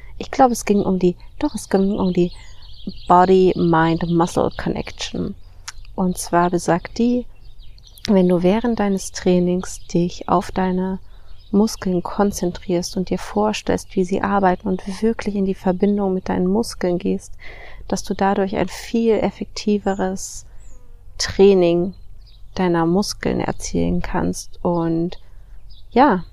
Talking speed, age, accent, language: 125 wpm, 30-49, German, German